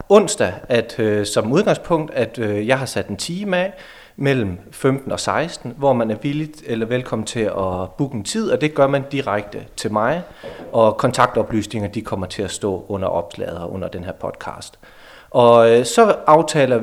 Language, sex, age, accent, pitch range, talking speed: Danish, male, 30-49, native, 110-150 Hz, 170 wpm